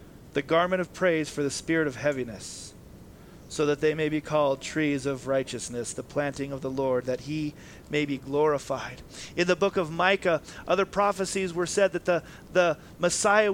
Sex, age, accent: male, 40-59, American